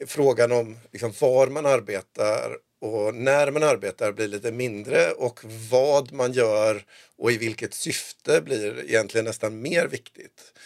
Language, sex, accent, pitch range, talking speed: Swedish, male, native, 120-160 Hz, 145 wpm